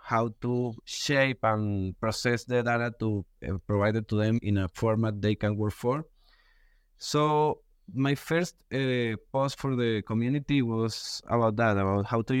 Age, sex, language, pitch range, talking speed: 20-39, male, English, 110-140 Hz, 165 wpm